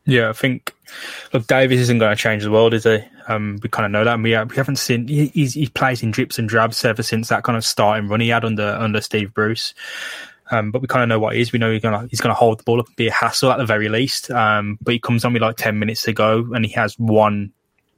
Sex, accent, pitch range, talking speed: male, British, 110-125 Hz, 285 wpm